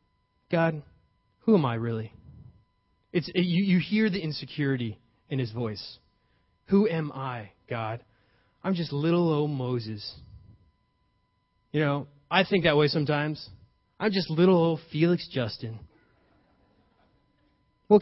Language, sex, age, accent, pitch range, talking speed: English, male, 20-39, American, 125-200 Hz, 125 wpm